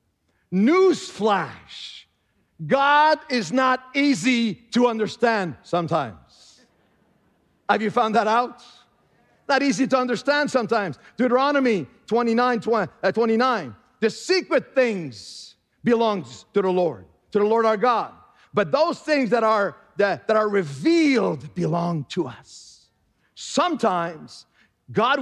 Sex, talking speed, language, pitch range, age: male, 110 wpm, English, 195-250 Hz, 50-69